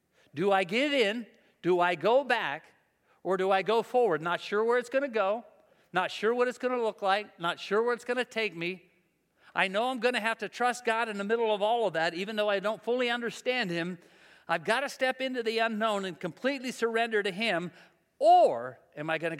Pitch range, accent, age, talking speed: 180-230 Hz, American, 50-69, 235 wpm